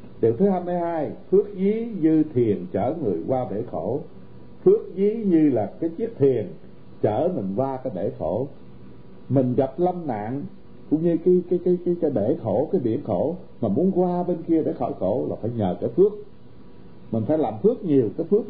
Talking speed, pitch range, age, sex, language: 200 wpm, 115-180 Hz, 50-69, male, Vietnamese